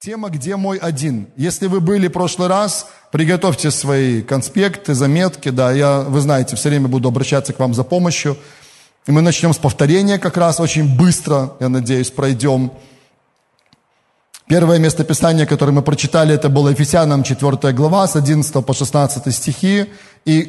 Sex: male